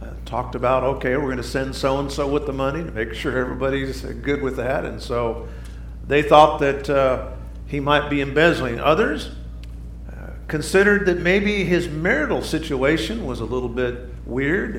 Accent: American